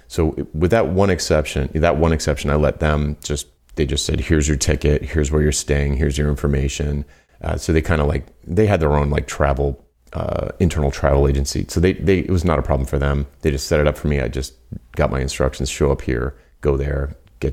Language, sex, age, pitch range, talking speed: English, male, 30-49, 70-80 Hz, 235 wpm